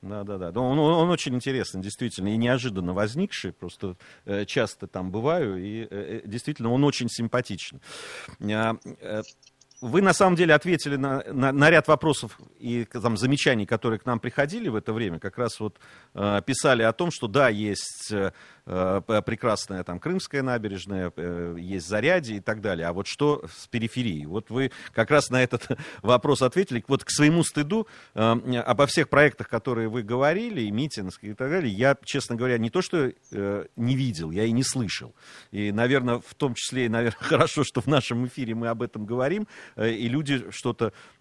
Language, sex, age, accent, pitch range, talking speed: Russian, male, 40-59, native, 105-135 Hz, 165 wpm